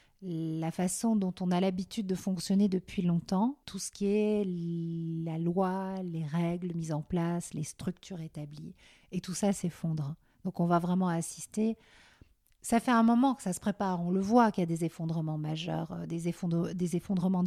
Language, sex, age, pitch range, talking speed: French, female, 50-69, 165-195 Hz, 185 wpm